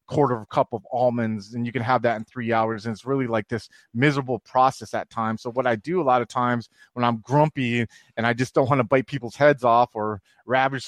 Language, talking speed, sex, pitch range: English, 255 wpm, male, 120-145 Hz